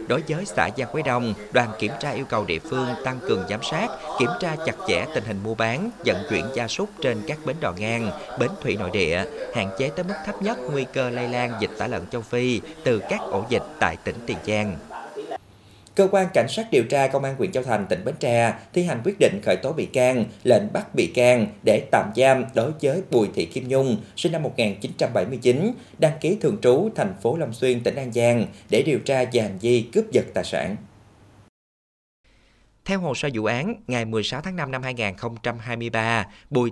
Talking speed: 215 wpm